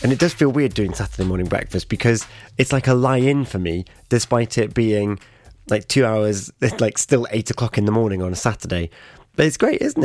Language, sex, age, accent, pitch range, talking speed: English, male, 30-49, British, 105-130 Hz, 220 wpm